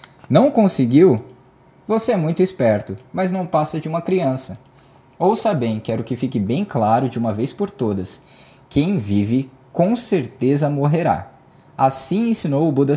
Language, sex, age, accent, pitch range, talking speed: Portuguese, male, 20-39, Brazilian, 125-175 Hz, 155 wpm